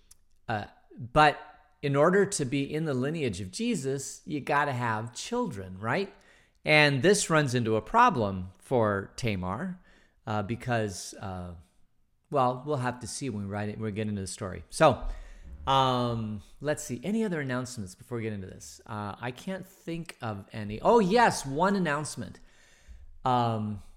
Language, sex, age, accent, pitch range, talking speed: English, male, 40-59, American, 105-140 Hz, 160 wpm